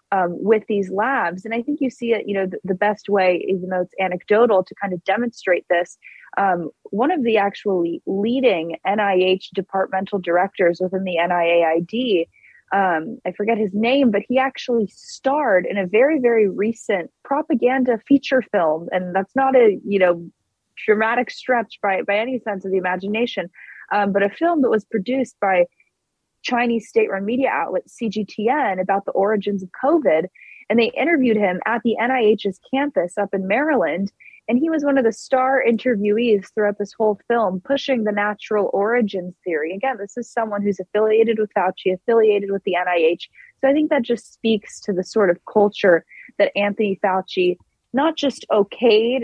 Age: 20-39